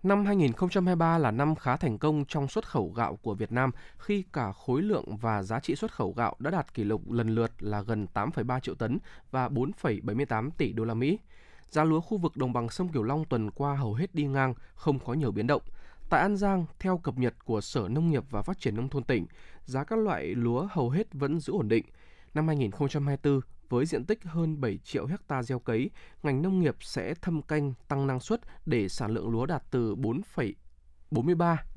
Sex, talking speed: male, 215 wpm